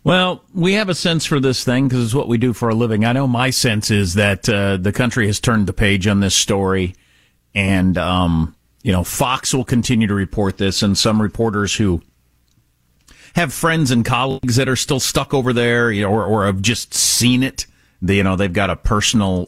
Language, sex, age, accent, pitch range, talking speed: English, male, 50-69, American, 95-125 Hz, 210 wpm